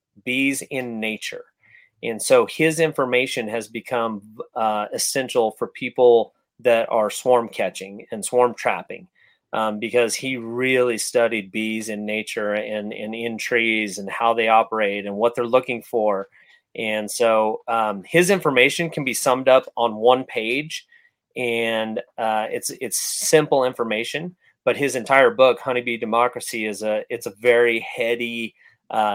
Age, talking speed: 30-49, 150 wpm